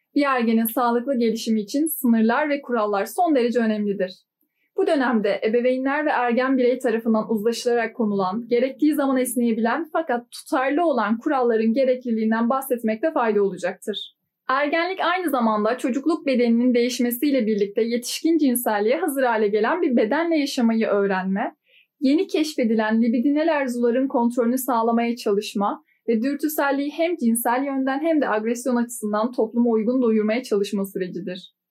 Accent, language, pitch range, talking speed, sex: native, Turkish, 220-270 Hz, 130 wpm, female